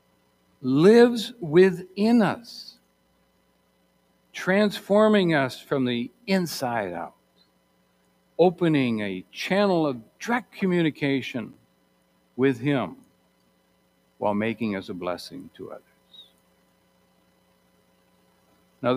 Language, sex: English, male